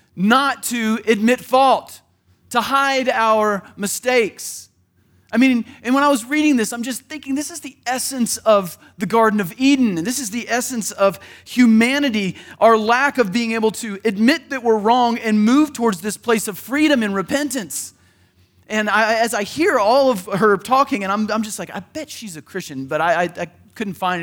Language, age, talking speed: English, 30-49, 195 wpm